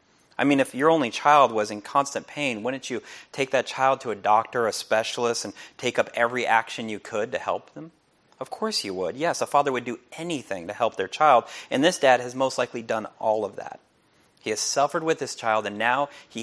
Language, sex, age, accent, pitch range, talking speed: English, male, 30-49, American, 110-140 Hz, 230 wpm